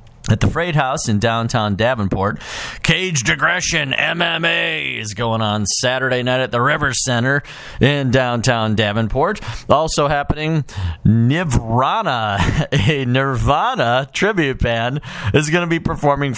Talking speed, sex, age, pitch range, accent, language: 125 wpm, male, 40-59, 115-155 Hz, American, English